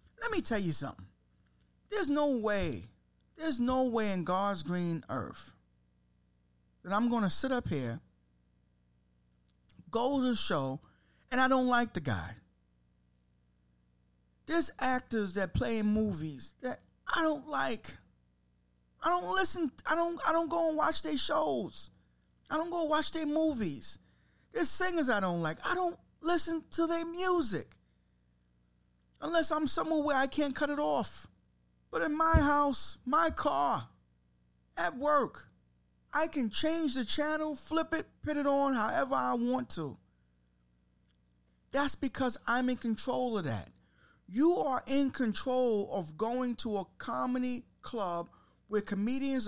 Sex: male